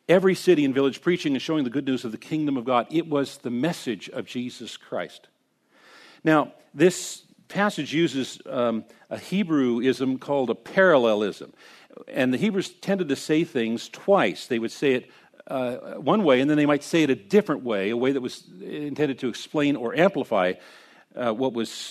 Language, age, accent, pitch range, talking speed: English, 50-69, American, 130-175 Hz, 185 wpm